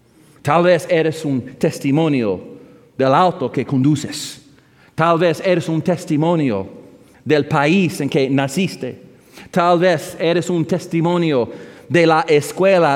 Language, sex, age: English, male, 40-59